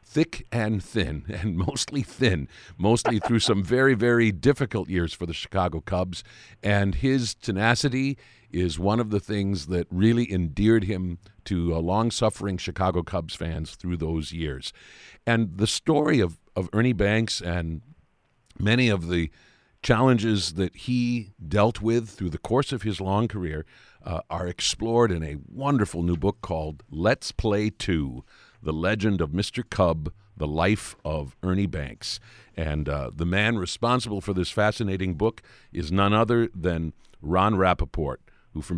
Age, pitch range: 50-69, 80-110 Hz